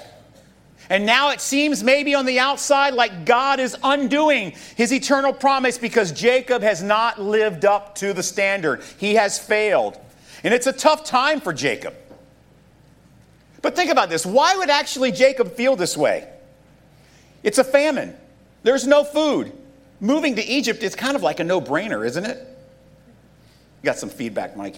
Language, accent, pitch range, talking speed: English, American, 170-265 Hz, 160 wpm